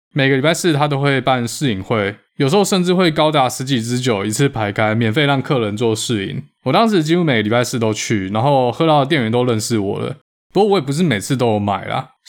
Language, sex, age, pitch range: Chinese, male, 20-39, 110-150 Hz